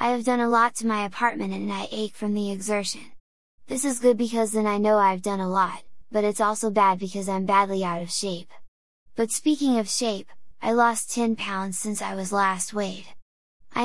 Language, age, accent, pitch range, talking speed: English, 10-29, American, 200-235 Hz, 210 wpm